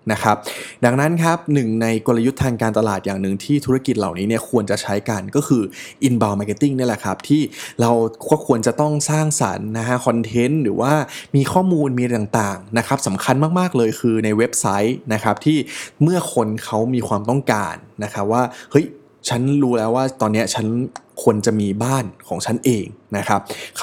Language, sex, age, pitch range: Thai, male, 20-39, 115-140 Hz